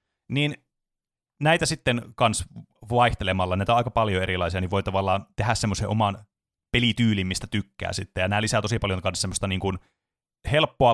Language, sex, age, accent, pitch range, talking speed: Finnish, male, 30-49, native, 100-135 Hz, 165 wpm